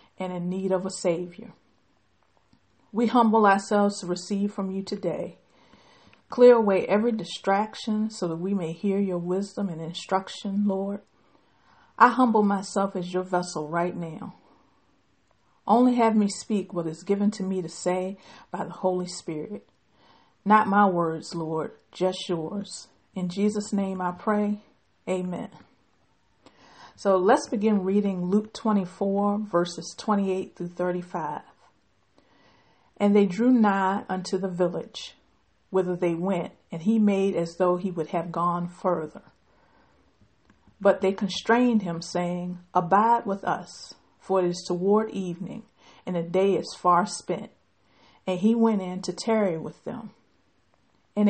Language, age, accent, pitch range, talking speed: English, 50-69, American, 180-210 Hz, 140 wpm